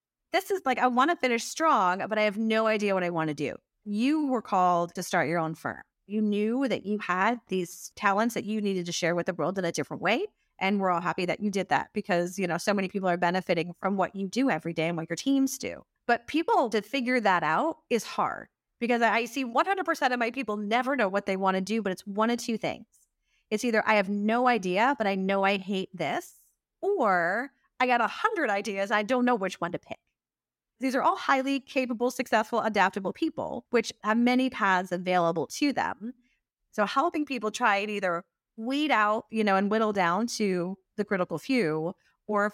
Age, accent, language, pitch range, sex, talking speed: 30-49, American, English, 185-245 Hz, female, 225 wpm